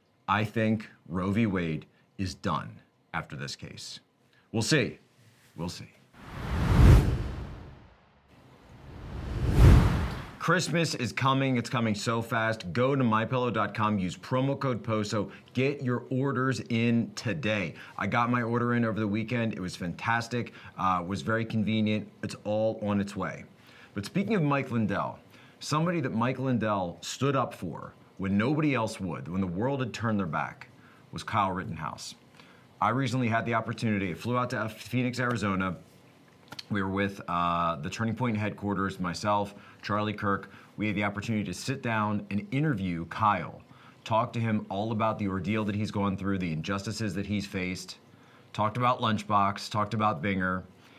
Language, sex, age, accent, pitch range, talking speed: English, male, 30-49, American, 100-120 Hz, 155 wpm